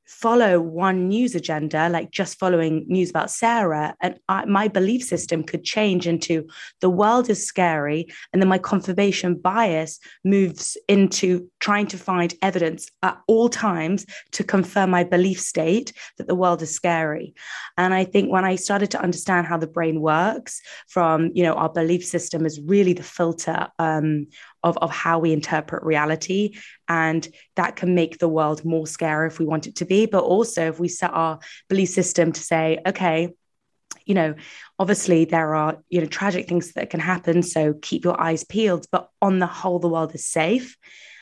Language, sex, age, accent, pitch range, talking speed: English, female, 20-39, British, 165-190 Hz, 180 wpm